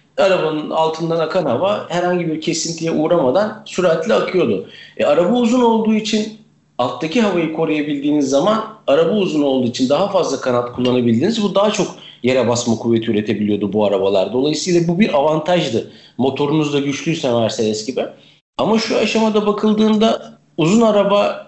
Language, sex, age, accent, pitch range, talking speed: Turkish, male, 50-69, native, 125-185 Hz, 145 wpm